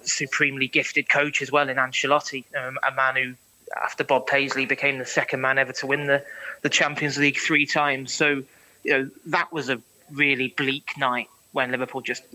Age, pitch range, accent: 20-39, 130-145 Hz, British